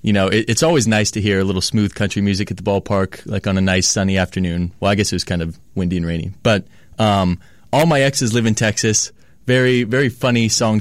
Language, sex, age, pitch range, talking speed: English, male, 20-39, 95-115 Hz, 245 wpm